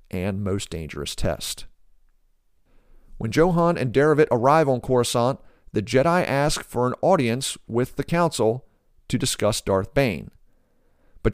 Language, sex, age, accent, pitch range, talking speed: English, male, 40-59, American, 110-140 Hz, 130 wpm